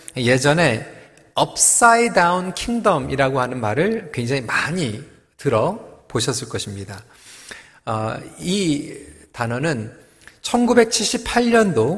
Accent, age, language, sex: native, 40-59, Korean, male